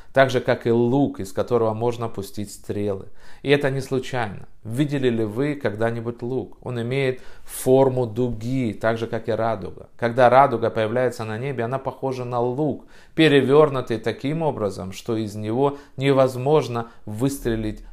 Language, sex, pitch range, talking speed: Russian, male, 105-130 Hz, 150 wpm